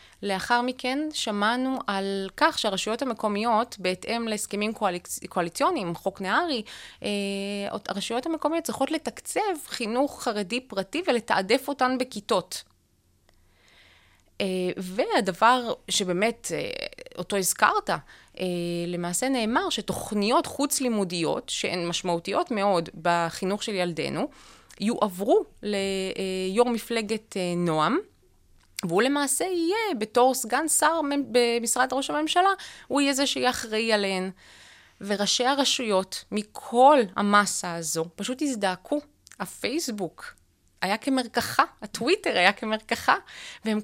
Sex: female